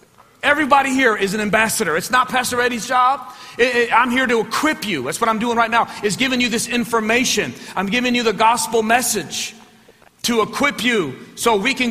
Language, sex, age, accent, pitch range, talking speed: English, male, 40-59, American, 225-250 Hz, 190 wpm